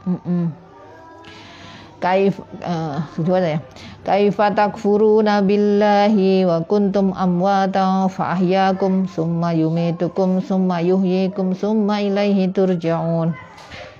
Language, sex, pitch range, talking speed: Indonesian, female, 185-205 Hz, 75 wpm